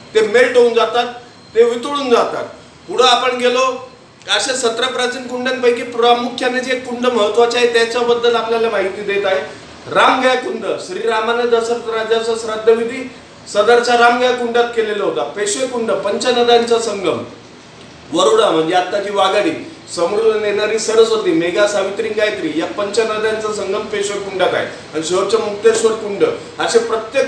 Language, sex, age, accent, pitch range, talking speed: Marathi, male, 40-59, native, 210-240 Hz, 85 wpm